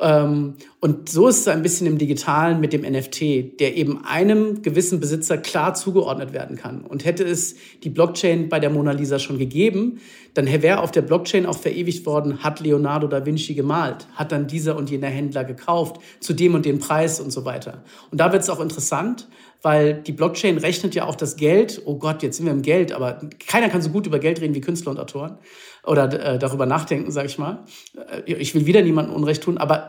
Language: German